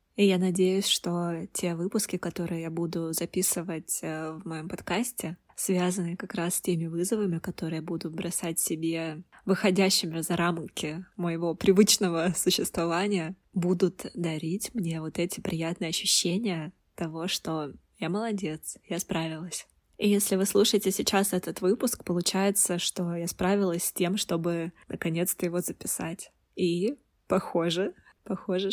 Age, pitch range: 20-39, 170-195 Hz